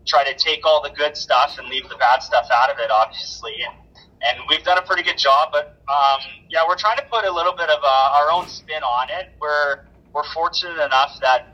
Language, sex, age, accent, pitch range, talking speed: English, male, 30-49, American, 125-155 Hz, 240 wpm